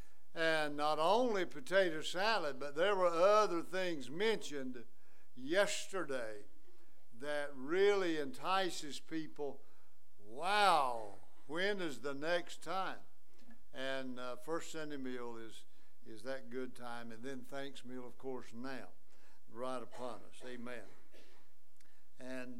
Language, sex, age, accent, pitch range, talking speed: English, male, 60-79, American, 115-165 Hz, 115 wpm